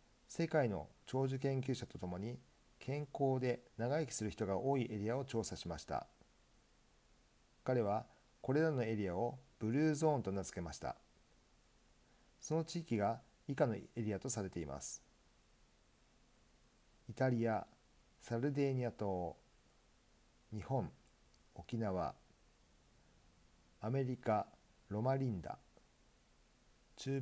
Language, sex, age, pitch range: Japanese, male, 50-69, 95-135 Hz